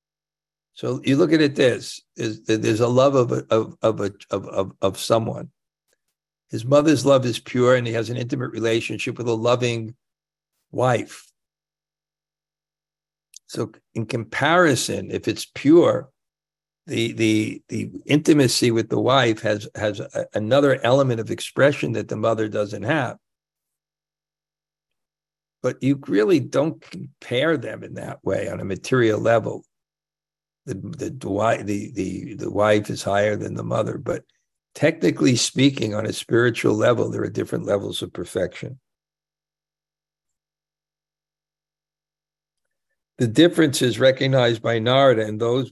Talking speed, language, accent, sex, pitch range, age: 135 wpm, English, American, male, 115-155 Hz, 60-79